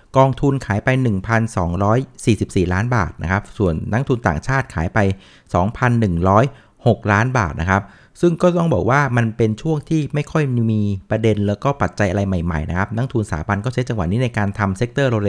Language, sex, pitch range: Thai, male, 100-130 Hz